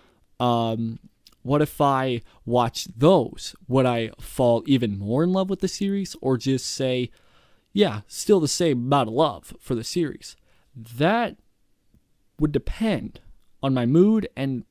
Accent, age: American, 20-39